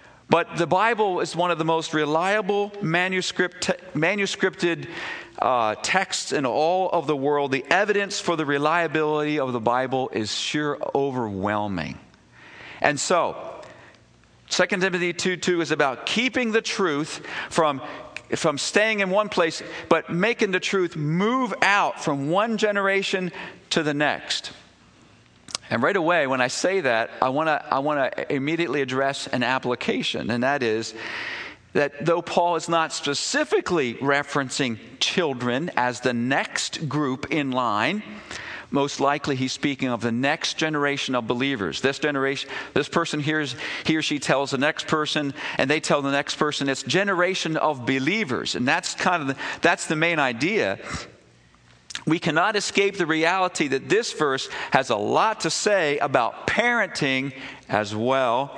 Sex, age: male, 50-69